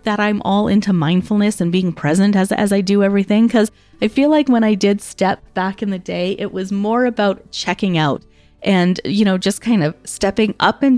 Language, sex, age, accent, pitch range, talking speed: English, female, 30-49, American, 180-215 Hz, 220 wpm